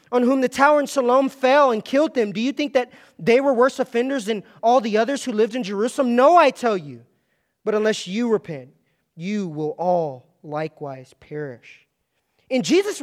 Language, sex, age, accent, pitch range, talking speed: English, male, 20-39, American, 185-255 Hz, 190 wpm